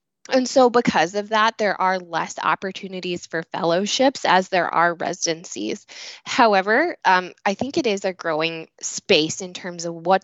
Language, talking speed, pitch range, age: English, 165 wpm, 170-205 Hz, 20-39